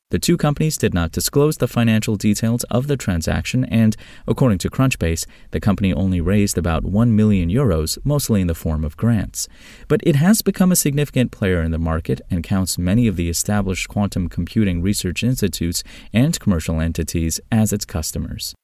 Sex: male